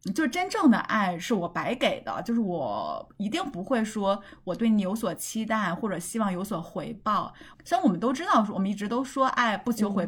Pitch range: 195-260 Hz